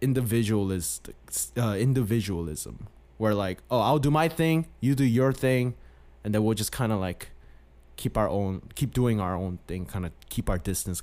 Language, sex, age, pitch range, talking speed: English, male, 20-39, 85-145 Hz, 180 wpm